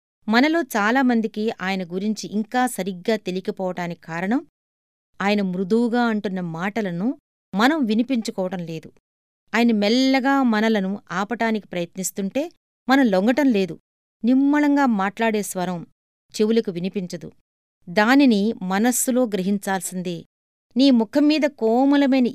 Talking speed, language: 85 wpm, Telugu